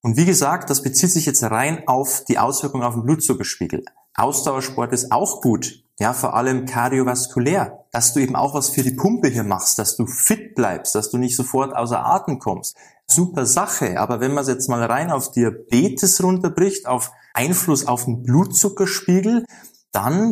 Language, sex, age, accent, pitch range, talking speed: German, male, 20-39, German, 130-165 Hz, 180 wpm